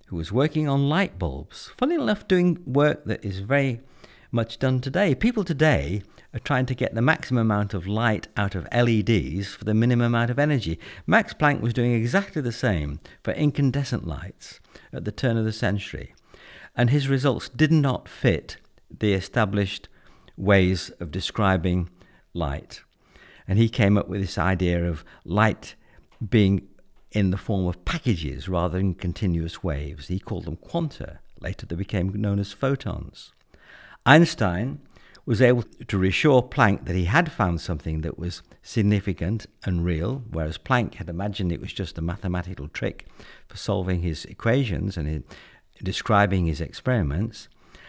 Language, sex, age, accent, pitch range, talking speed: English, male, 60-79, British, 90-125 Hz, 160 wpm